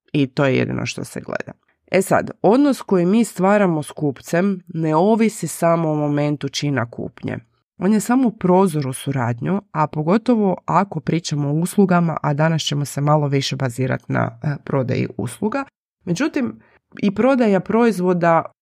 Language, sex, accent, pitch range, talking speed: Croatian, female, native, 150-190 Hz, 160 wpm